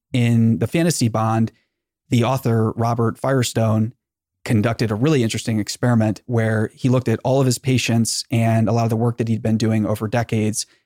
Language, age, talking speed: English, 30-49, 180 wpm